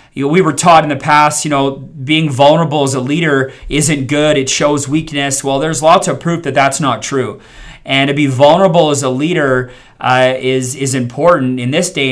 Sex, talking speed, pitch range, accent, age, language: male, 215 wpm, 125-150 Hz, American, 30-49, English